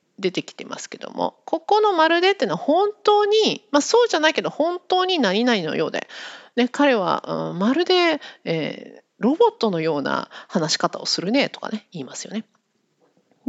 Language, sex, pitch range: Japanese, female, 225-370 Hz